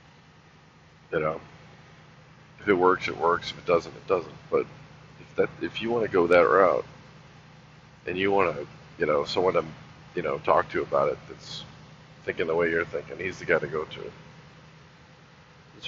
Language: English